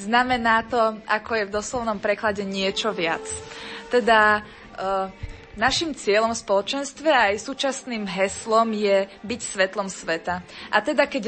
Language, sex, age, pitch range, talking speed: Slovak, female, 20-39, 200-235 Hz, 135 wpm